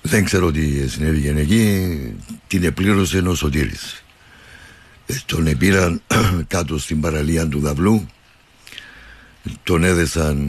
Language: Greek